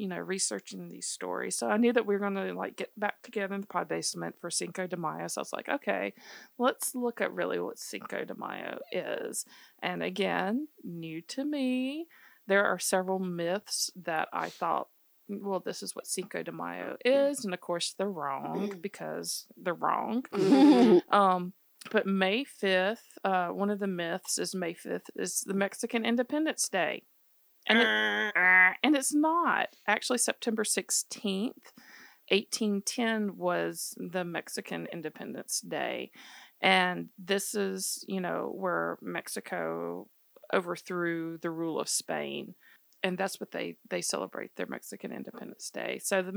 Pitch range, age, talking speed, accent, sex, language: 180-235 Hz, 40-59, 155 wpm, American, female, English